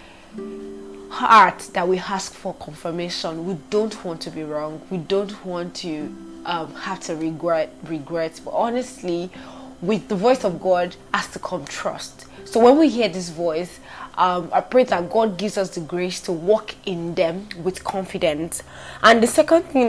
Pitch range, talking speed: 180-215 Hz, 170 wpm